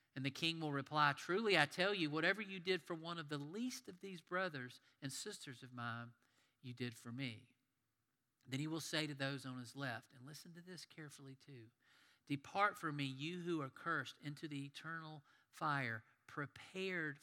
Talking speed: 190 wpm